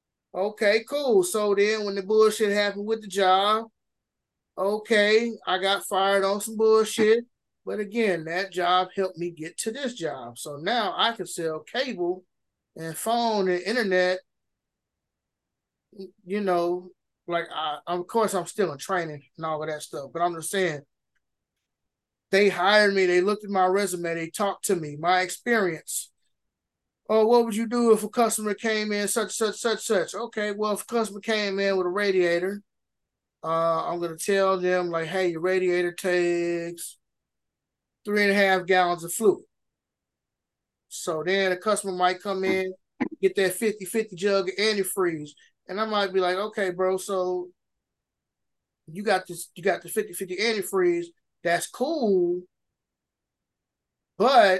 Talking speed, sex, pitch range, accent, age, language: 160 wpm, male, 180-215 Hz, American, 20-39, Dutch